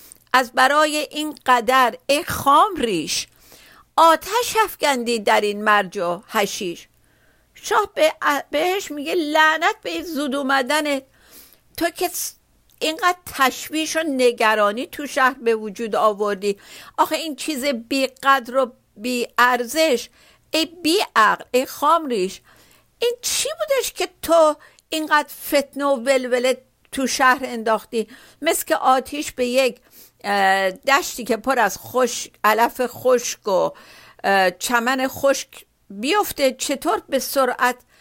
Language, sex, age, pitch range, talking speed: Persian, female, 50-69, 235-310 Hz, 120 wpm